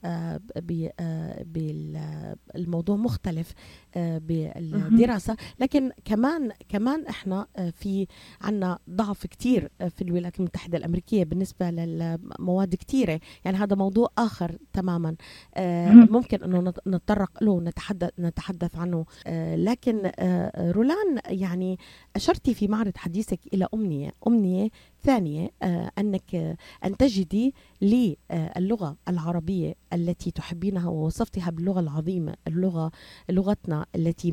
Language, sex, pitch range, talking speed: Arabic, female, 170-215 Hz, 115 wpm